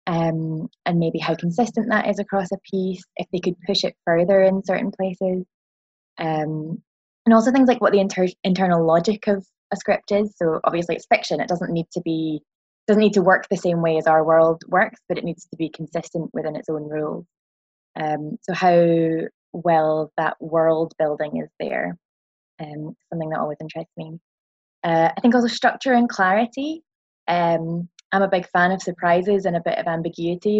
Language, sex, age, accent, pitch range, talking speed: English, female, 20-39, British, 160-190 Hz, 190 wpm